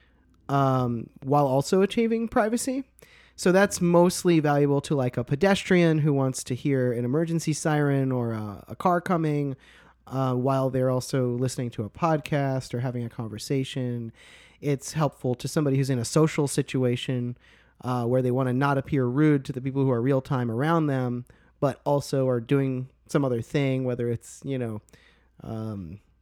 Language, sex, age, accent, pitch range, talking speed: English, male, 30-49, American, 125-155 Hz, 170 wpm